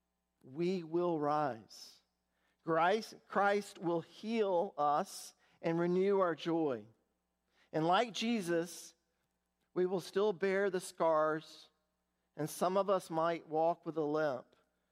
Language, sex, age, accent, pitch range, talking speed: English, male, 50-69, American, 115-175 Hz, 115 wpm